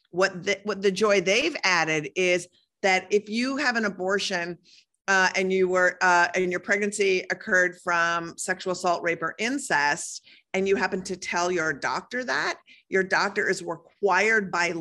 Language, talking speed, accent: English, 170 wpm, American